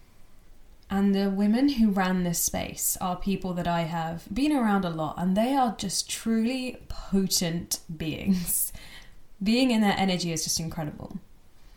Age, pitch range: 10-29, 170-225 Hz